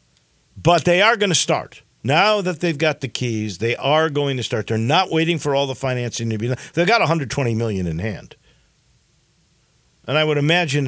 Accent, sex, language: American, male, English